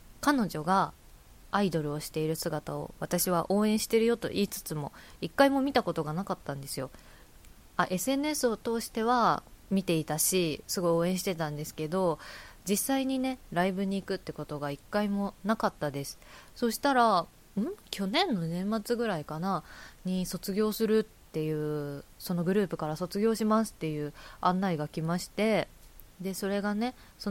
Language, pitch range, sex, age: Japanese, 165-215 Hz, female, 20-39